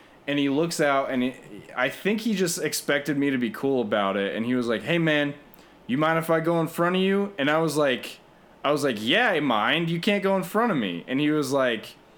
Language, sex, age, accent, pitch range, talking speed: English, male, 20-39, American, 145-200 Hz, 260 wpm